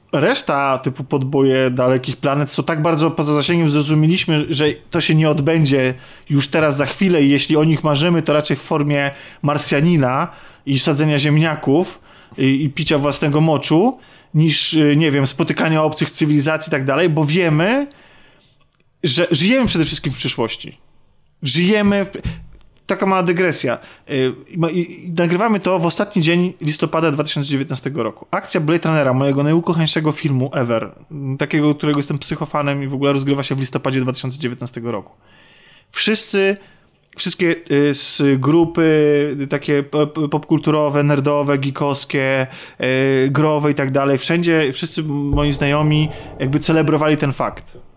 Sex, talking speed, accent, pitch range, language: male, 135 wpm, native, 140-165 Hz, Polish